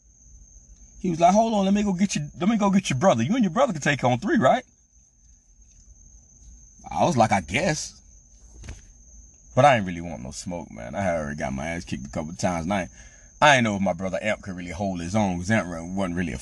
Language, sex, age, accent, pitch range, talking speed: English, male, 30-49, American, 65-100 Hz, 245 wpm